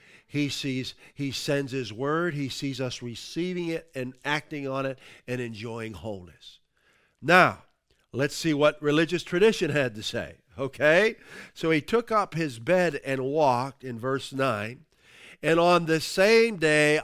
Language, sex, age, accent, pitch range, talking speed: English, male, 50-69, American, 130-180 Hz, 155 wpm